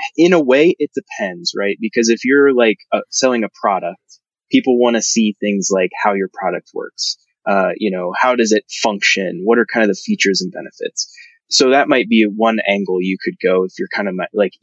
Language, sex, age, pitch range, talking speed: English, male, 20-39, 105-145 Hz, 220 wpm